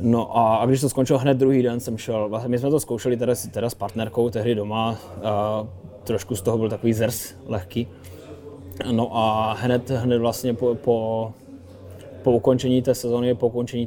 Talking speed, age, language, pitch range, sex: 185 wpm, 20-39, Czech, 100-120 Hz, male